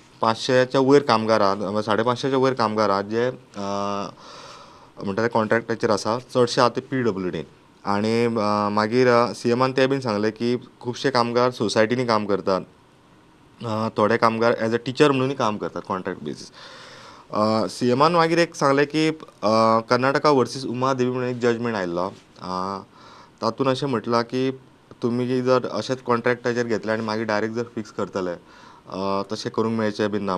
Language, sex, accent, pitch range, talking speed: English, male, Indian, 110-130 Hz, 55 wpm